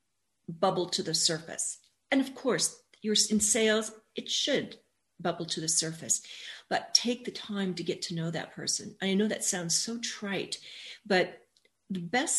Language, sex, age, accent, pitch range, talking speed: English, female, 40-59, American, 175-220 Hz, 170 wpm